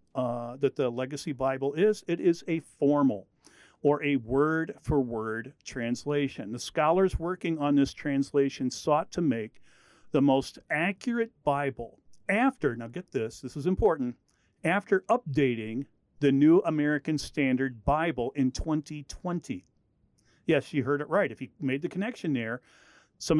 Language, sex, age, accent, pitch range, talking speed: English, male, 50-69, American, 130-170 Hz, 140 wpm